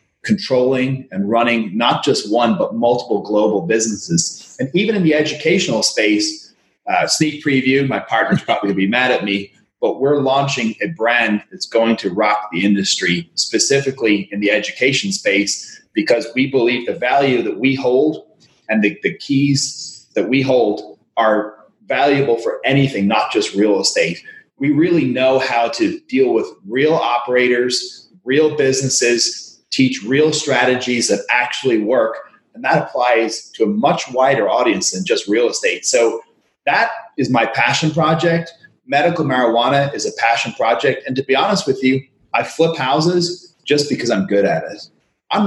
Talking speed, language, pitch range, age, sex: 160 wpm, English, 120-175 Hz, 30-49, male